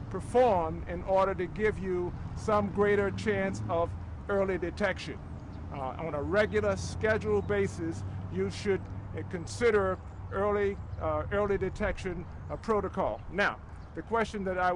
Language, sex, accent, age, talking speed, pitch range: English, male, American, 50-69, 135 wpm, 165-210 Hz